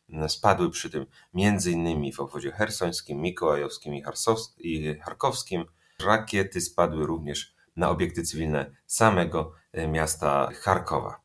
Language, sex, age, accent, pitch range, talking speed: Polish, male, 30-49, native, 80-95 Hz, 100 wpm